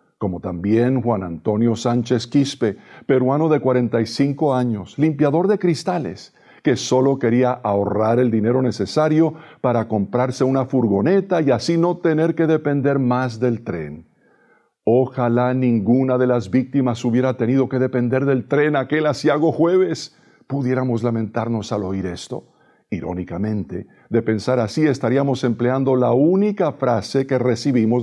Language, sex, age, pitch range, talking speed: Spanish, male, 50-69, 120-160 Hz, 135 wpm